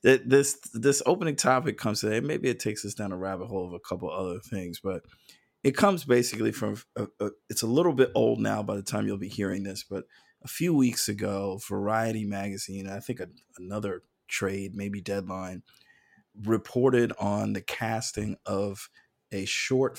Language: English